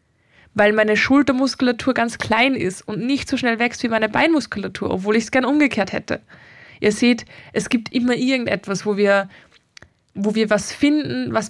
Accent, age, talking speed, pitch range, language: German, 20-39, 165 wpm, 210-245 Hz, German